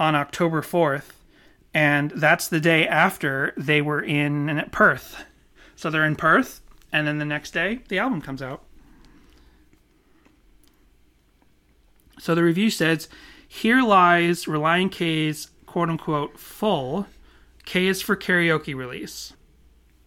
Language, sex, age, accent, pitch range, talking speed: English, male, 30-49, American, 145-185 Hz, 130 wpm